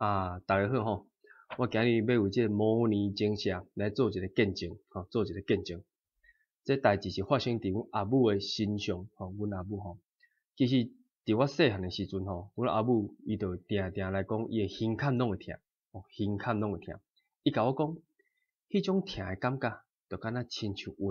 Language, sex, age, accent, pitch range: Chinese, male, 20-39, native, 95-125 Hz